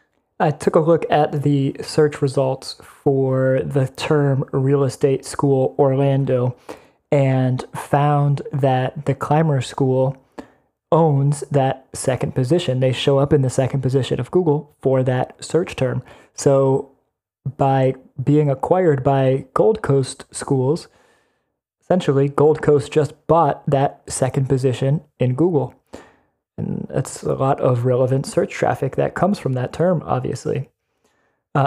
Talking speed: 135 wpm